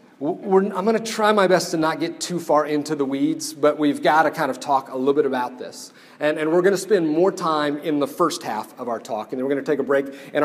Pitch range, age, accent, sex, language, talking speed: 140-170 Hz, 40-59, American, male, English, 295 wpm